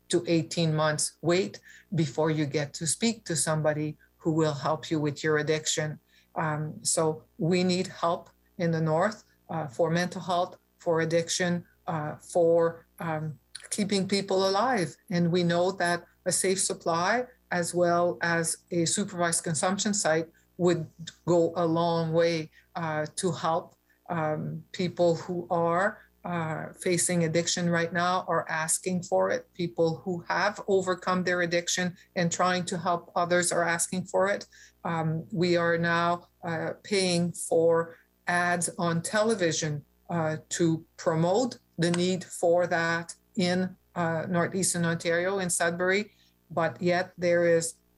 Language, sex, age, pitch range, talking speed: English, female, 50-69, 160-180 Hz, 145 wpm